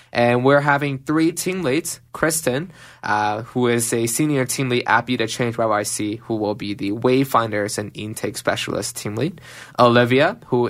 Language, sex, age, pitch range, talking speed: English, male, 20-39, 110-135 Hz, 170 wpm